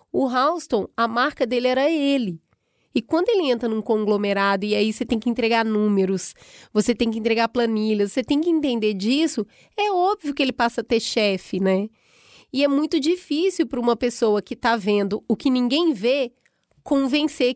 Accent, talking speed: Brazilian, 185 wpm